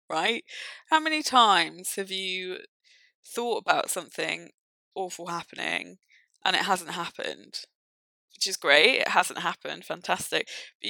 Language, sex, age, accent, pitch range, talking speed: English, female, 20-39, British, 190-250 Hz, 125 wpm